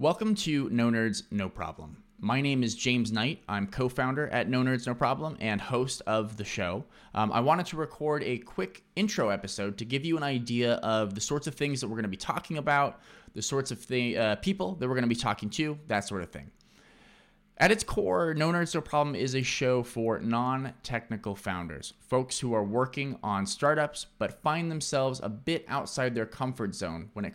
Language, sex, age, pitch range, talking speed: English, male, 30-49, 110-145 Hz, 210 wpm